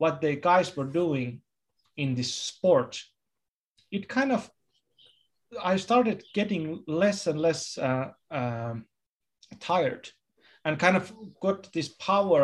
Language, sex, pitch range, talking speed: Finnish, male, 130-170 Hz, 125 wpm